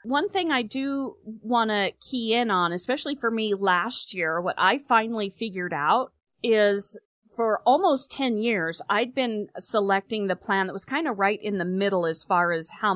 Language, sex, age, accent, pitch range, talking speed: English, female, 40-59, American, 190-235 Hz, 190 wpm